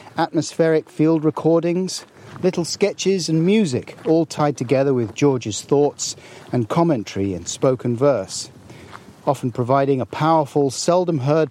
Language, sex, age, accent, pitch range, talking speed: English, male, 40-59, British, 115-155 Hz, 120 wpm